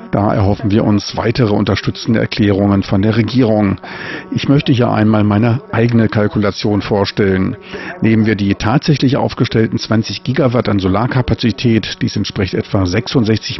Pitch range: 100-115 Hz